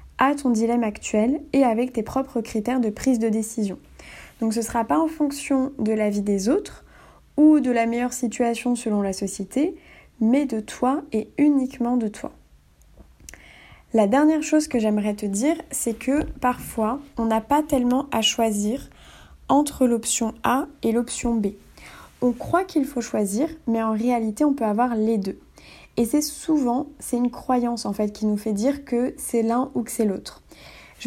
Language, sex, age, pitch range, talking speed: French, female, 20-39, 220-270 Hz, 185 wpm